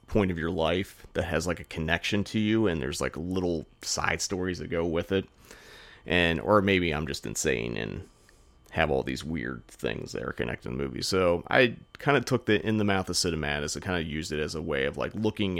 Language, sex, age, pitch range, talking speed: English, male, 30-49, 80-105 Hz, 235 wpm